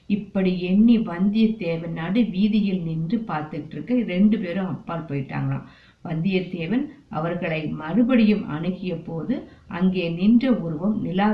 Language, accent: Tamil, native